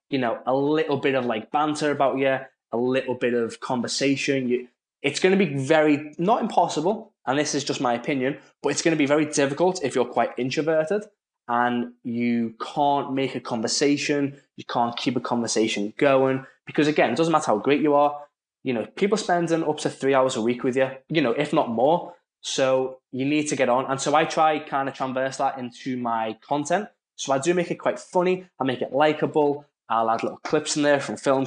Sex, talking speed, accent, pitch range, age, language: male, 215 wpm, British, 125-150 Hz, 10-29, English